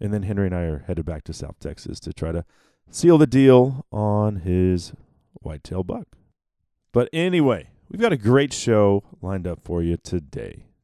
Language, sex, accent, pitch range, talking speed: English, male, American, 95-135 Hz, 185 wpm